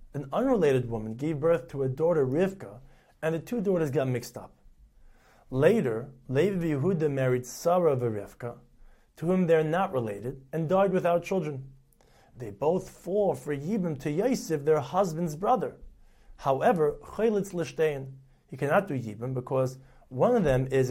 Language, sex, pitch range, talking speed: English, male, 130-175 Hz, 155 wpm